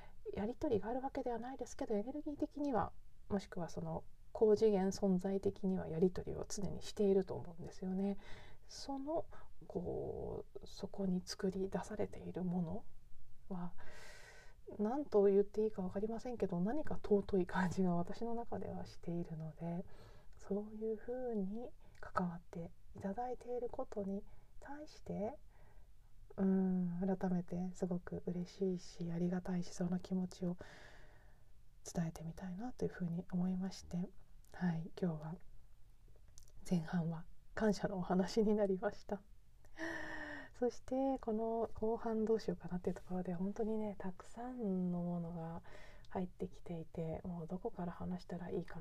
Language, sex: Japanese, female